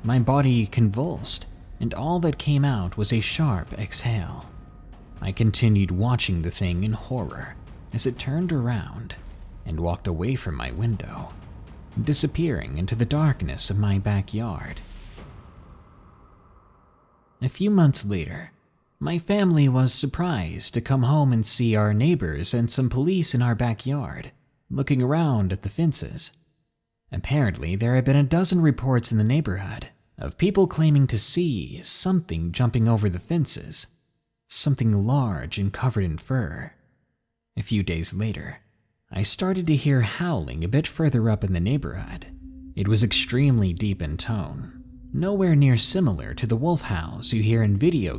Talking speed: 150 wpm